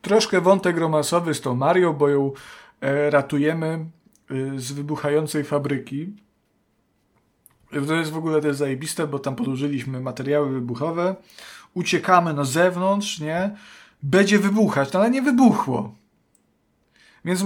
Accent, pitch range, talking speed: native, 140-185 Hz, 115 wpm